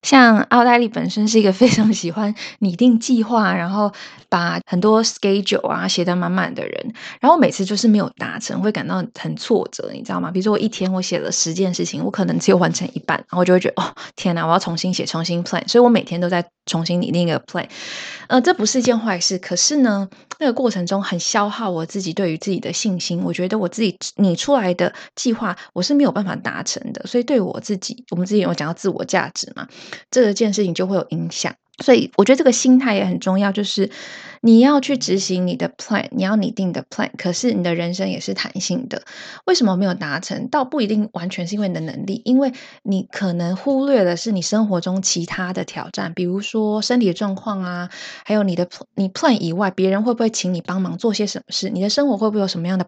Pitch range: 180-230 Hz